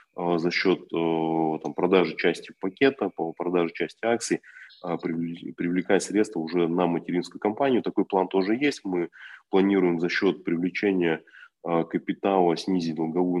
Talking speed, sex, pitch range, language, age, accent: 115 wpm, male, 85-100 Hz, Russian, 20-39, native